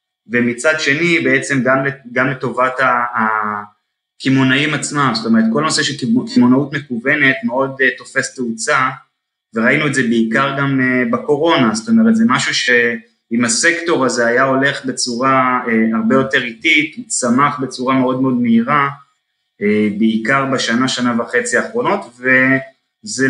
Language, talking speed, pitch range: Hebrew, 125 wpm, 120-145 Hz